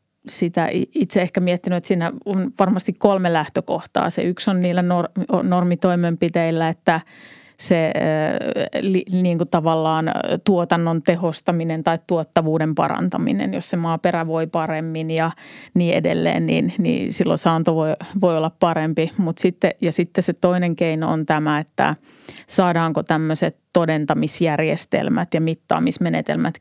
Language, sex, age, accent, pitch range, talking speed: Finnish, female, 30-49, native, 160-185 Hz, 125 wpm